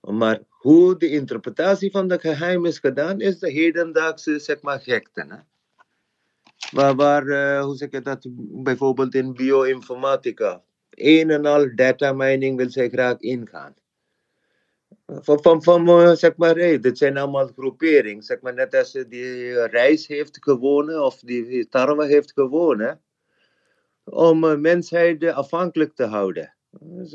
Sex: male